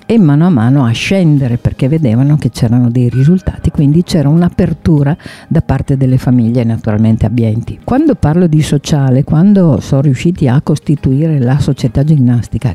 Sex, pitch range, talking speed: female, 130-170 Hz, 155 wpm